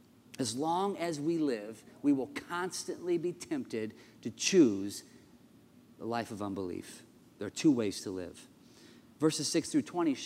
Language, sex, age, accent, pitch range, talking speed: English, male, 30-49, American, 140-180 Hz, 150 wpm